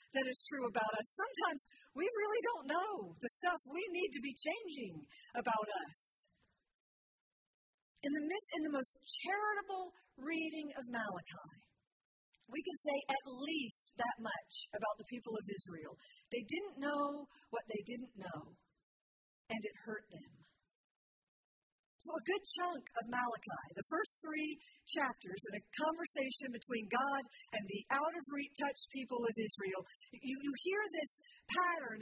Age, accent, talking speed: 50-69, American, 150 wpm